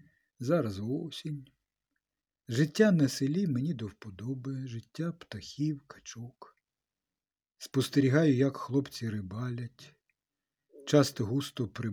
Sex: male